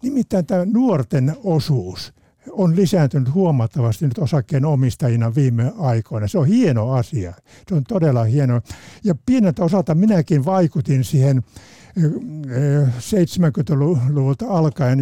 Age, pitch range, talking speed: 60-79, 135-180 Hz, 110 wpm